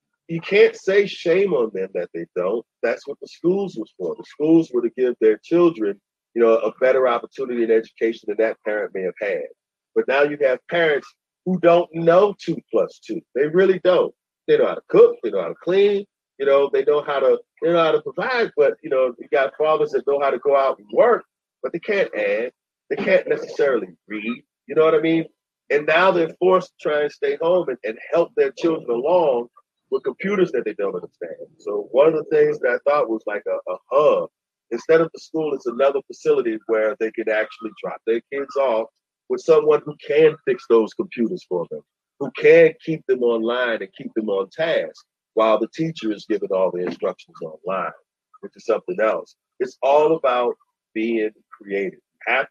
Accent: American